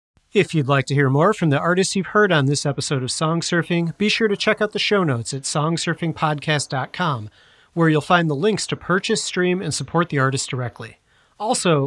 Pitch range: 145-195 Hz